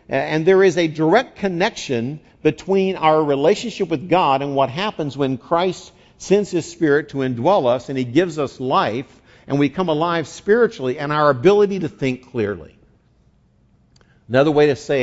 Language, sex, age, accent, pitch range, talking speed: English, male, 50-69, American, 120-155 Hz, 170 wpm